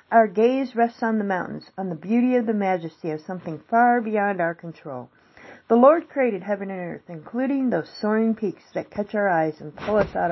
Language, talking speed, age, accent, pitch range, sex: English, 210 wpm, 50-69, American, 175-235 Hz, female